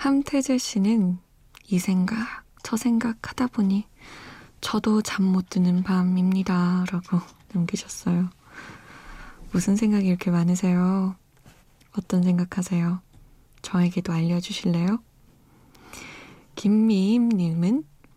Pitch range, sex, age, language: 175-210 Hz, female, 20-39, Korean